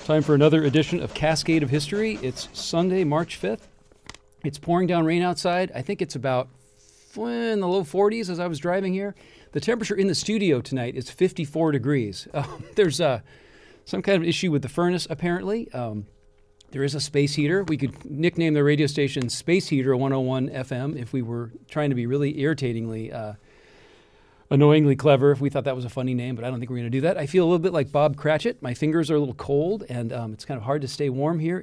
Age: 40-59